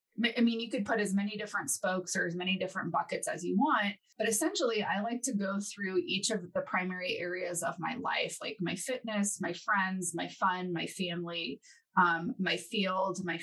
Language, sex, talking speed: English, female, 200 wpm